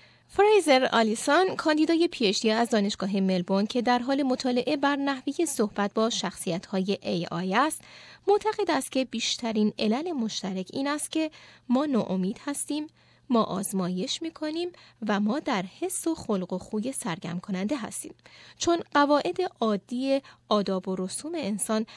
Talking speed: 145 wpm